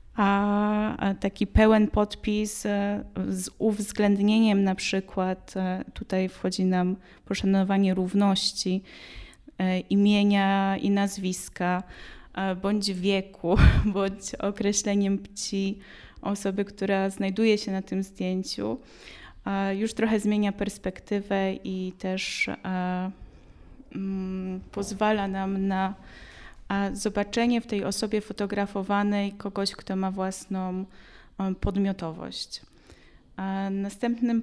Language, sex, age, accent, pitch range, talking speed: Polish, female, 20-39, native, 190-210 Hz, 85 wpm